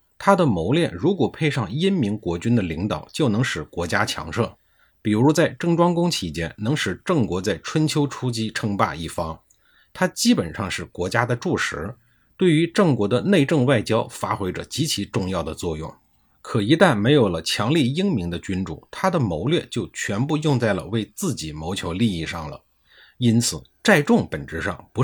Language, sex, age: Chinese, male, 50-69